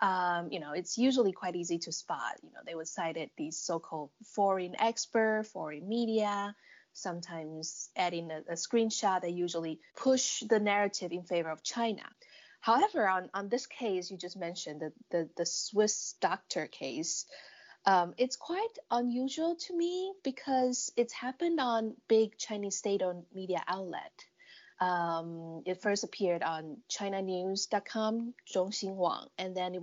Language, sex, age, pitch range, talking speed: English, female, 30-49, 175-235 Hz, 150 wpm